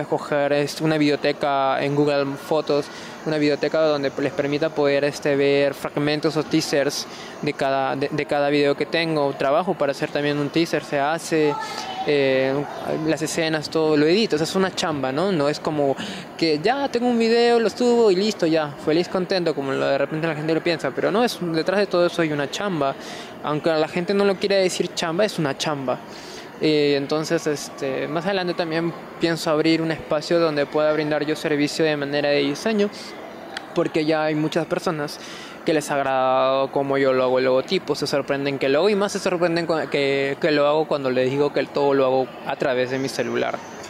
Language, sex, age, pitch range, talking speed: Spanish, male, 20-39, 145-170 Hz, 200 wpm